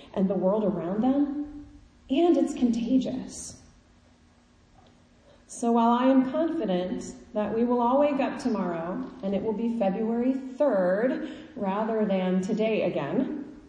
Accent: American